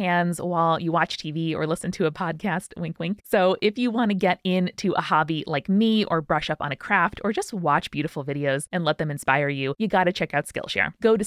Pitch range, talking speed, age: 150-190 Hz, 250 wpm, 20-39